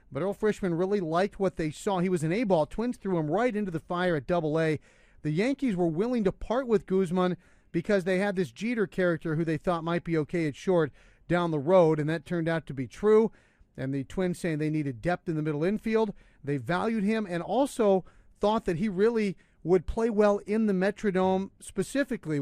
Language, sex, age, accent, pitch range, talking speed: English, male, 40-59, American, 155-195 Hz, 215 wpm